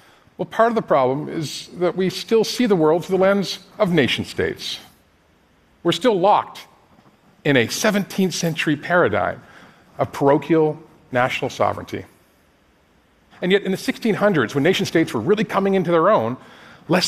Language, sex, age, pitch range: Korean, male, 50-69, 130-190 Hz